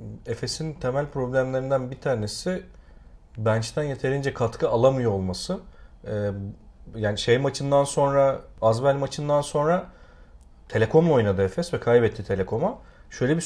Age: 40-59